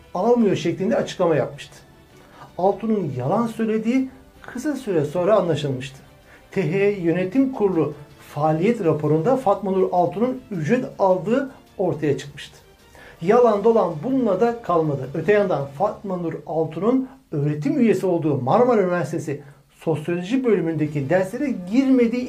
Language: Turkish